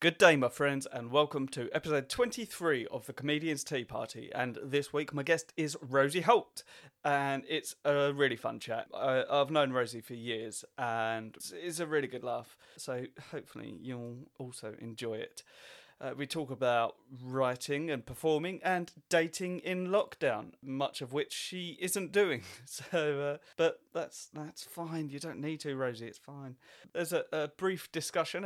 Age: 30-49